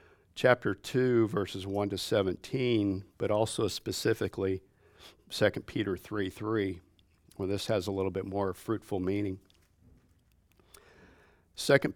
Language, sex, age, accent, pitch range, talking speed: English, male, 50-69, American, 95-105 Hz, 115 wpm